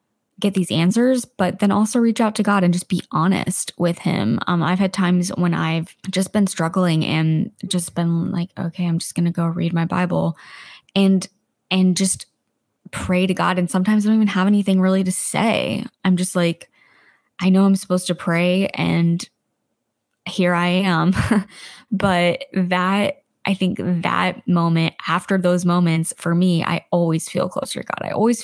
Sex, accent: female, American